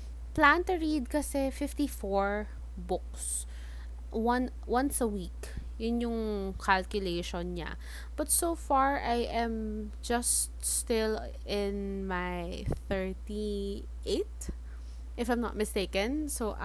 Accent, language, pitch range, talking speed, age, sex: Filipino, English, 180-255 Hz, 95 wpm, 20-39, female